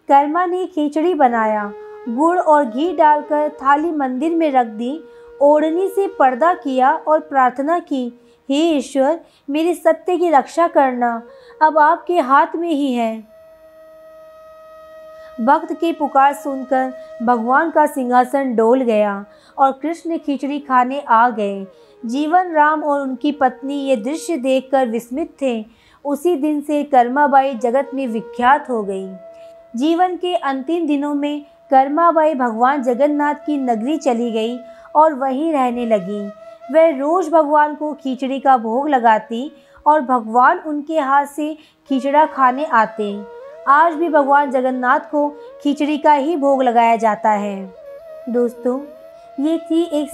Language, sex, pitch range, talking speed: Hindi, female, 255-315 Hz, 140 wpm